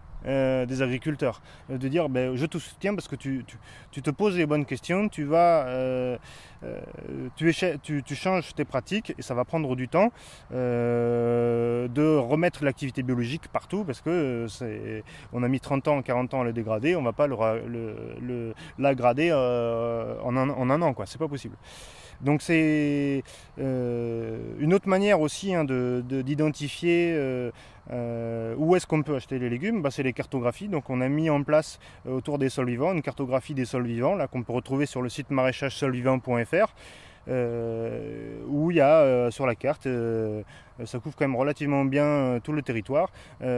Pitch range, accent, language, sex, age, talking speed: 120-150 Hz, French, French, male, 20-39, 185 wpm